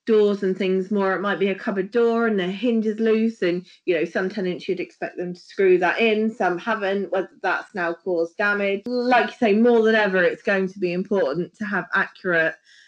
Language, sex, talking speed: English, female, 225 wpm